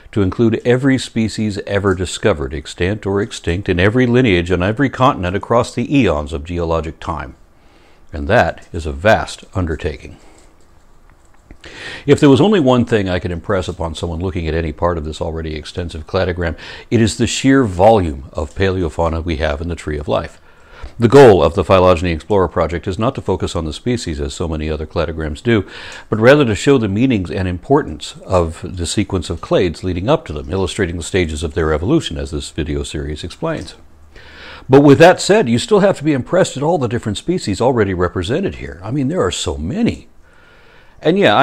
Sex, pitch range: male, 80-115 Hz